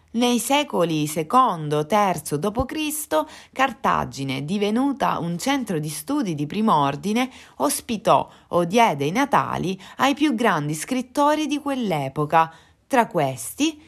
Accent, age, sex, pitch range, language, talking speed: native, 30-49, female, 150-245 Hz, Italian, 110 wpm